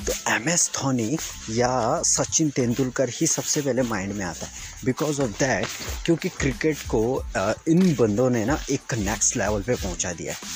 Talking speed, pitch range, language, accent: 180 wpm, 115-155 Hz, Hindi, native